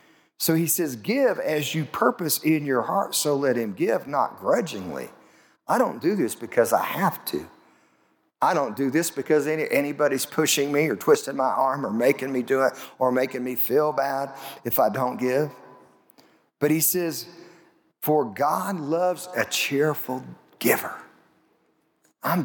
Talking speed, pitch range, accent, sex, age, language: 160 wpm, 130-170 Hz, American, male, 40-59, English